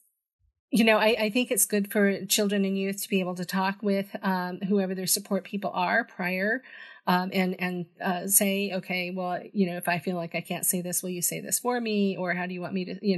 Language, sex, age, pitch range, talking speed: English, female, 40-59, 185-210 Hz, 250 wpm